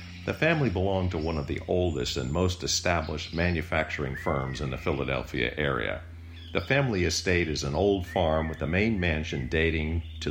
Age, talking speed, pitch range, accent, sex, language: 50-69, 175 wpm, 70-90 Hz, American, male, English